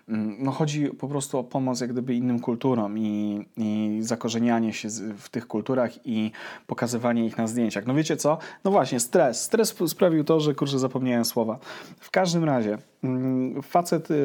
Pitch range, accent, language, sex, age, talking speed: 120-145 Hz, native, Polish, male, 30-49, 170 wpm